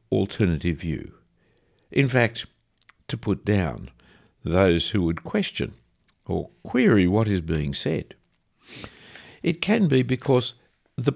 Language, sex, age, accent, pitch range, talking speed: English, male, 60-79, Australian, 90-130 Hz, 120 wpm